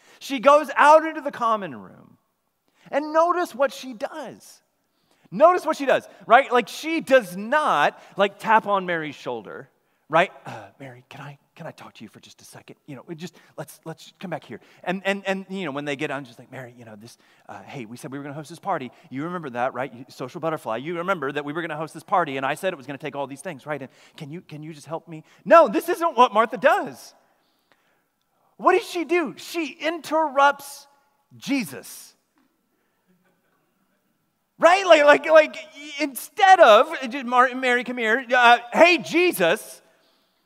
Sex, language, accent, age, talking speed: male, English, American, 30-49, 200 wpm